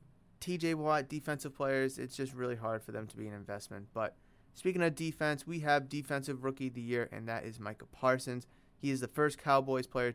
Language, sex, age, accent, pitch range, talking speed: English, male, 30-49, American, 115-155 Hz, 215 wpm